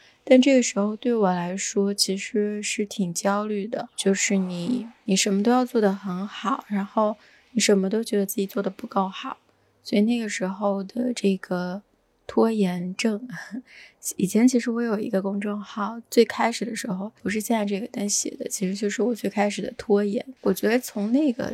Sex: female